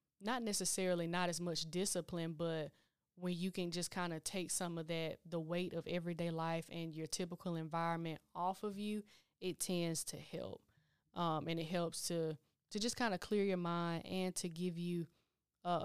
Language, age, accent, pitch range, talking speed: English, 10-29, American, 165-185 Hz, 185 wpm